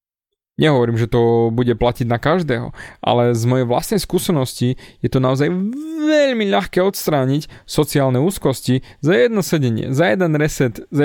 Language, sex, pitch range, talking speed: Slovak, male, 125-180 Hz, 145 wpm